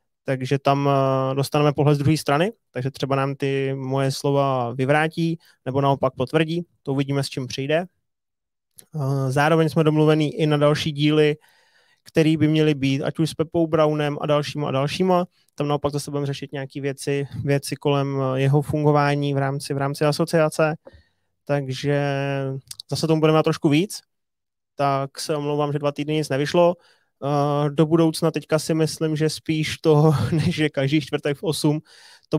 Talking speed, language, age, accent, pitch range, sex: 165 wpm, Czech, 20-39, native, 140-155 Hz, male